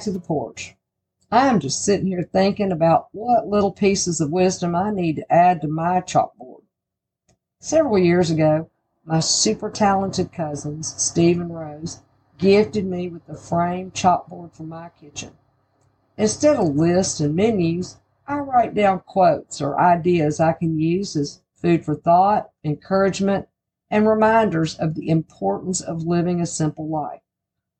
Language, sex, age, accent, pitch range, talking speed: English, female, 50-69, American, 155-195 Hz, 150 wpm